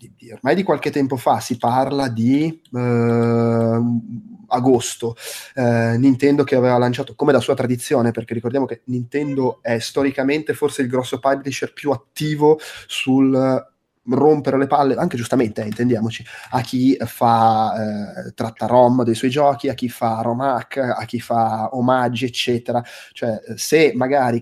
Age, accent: 20-39, native